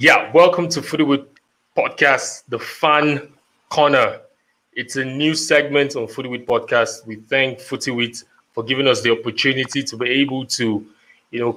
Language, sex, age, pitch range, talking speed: English, male, 20-39, 110-135 Hz, 150 wpm